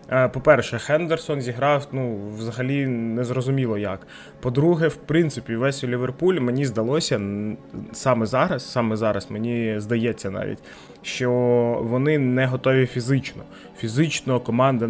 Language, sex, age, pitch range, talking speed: Ukrainian, male, 20-39, 115-140 Hz, 115 wpm